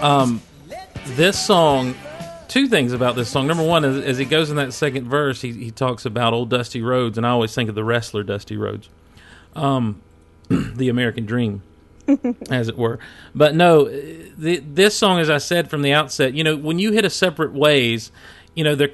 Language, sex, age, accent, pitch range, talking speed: English, male, 40-59, American, 115-145 Hz, 205 wpm